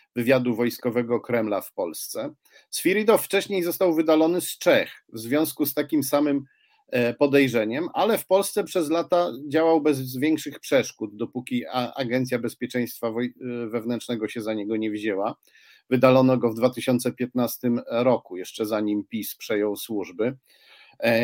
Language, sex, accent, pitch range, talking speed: Polish, male, native, 120-145 Hz, 125 wpm